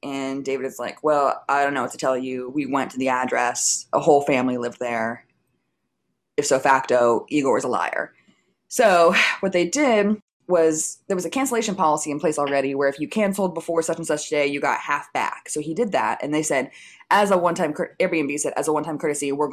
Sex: female